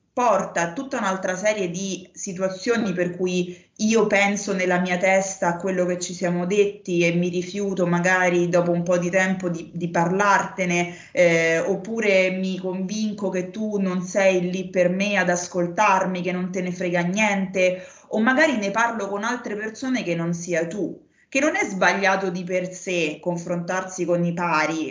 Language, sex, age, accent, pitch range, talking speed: Italian, female, 20-39, native, 170-200 Hz, 175 wpm